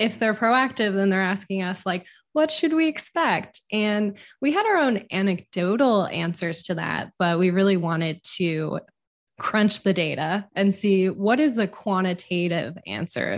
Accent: American